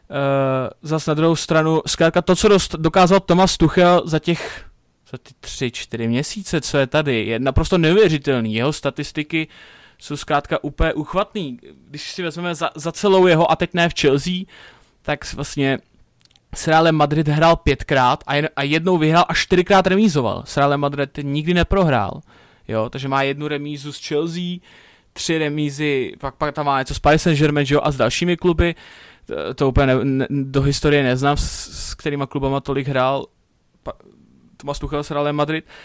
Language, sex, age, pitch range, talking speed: Czech, male, 20-39, 140-165 Hz, 165 wpm